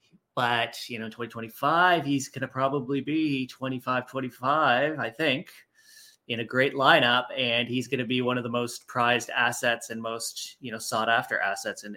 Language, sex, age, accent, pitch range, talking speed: English, male, 20-39, American, 110-130 Hz, 170 wpm